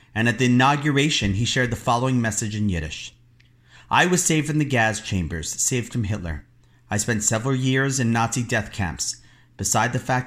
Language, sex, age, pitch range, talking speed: English, male, 40-59, 100-125 Hz, 185 wpm